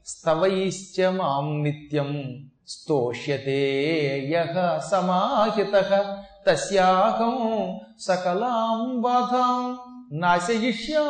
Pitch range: 145-200 Hz